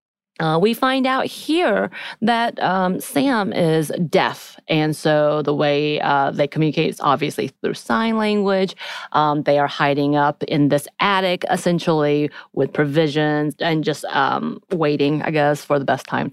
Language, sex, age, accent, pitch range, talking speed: English, female, 30-49, American, 145-175 Hz, 160 wpm